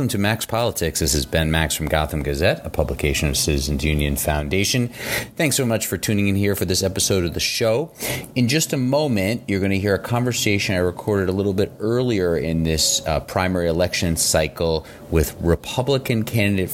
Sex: male